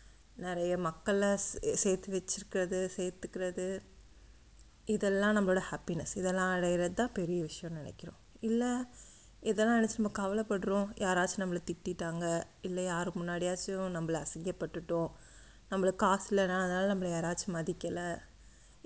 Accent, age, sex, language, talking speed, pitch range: native, 20-39, female, Tamil, 100 wpm, 175-215 Hz